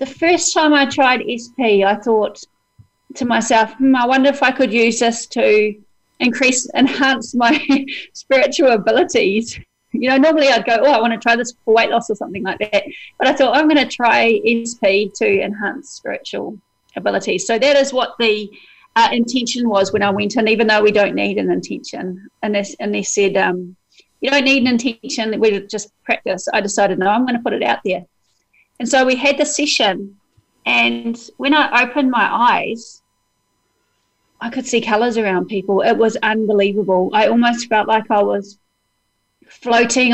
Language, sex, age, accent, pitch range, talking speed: English, female, 40-59, Australian, 210-270 Hz, 185 wpm